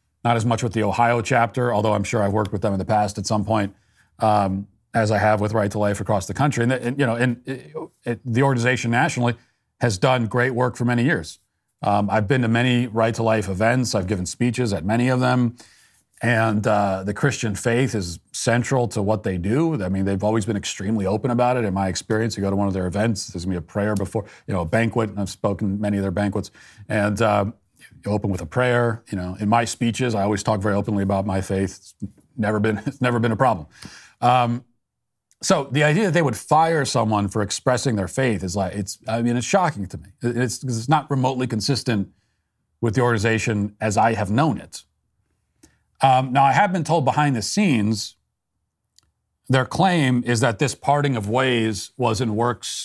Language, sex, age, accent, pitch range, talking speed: English, male, 40-59, American, 105-125 Hz, 220 wpm